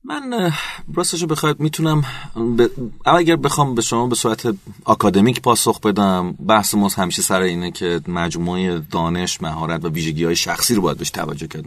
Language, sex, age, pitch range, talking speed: Persian, male, 30-49, 85-125 Hz, 165 wpm